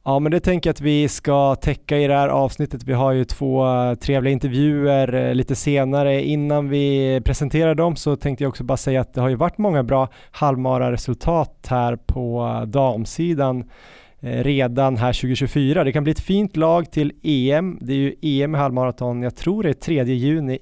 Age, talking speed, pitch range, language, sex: 20-39, 190 wpm, 130-145 Hz, Swedish, male